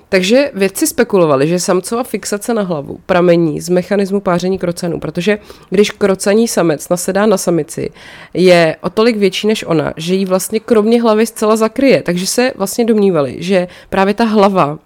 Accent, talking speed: native, 165 wpm